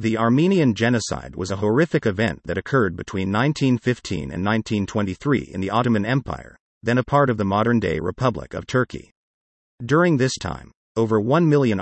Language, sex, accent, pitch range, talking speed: English, male, American, 95-125 Hz, 160 wpm